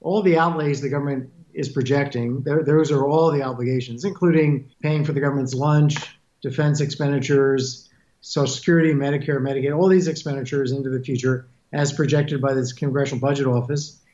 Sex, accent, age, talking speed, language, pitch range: male, American, 50-69, 155 wpm, English, 135-160 Hz